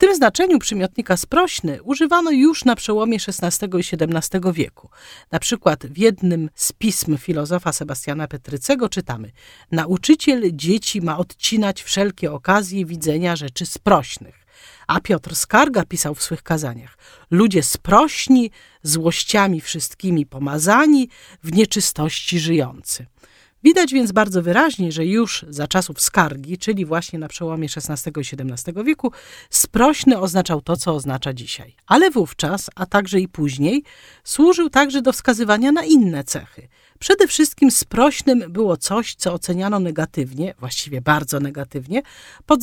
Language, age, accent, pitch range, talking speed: Polish, 40-59, native, 155-225 Hz, 135 wpm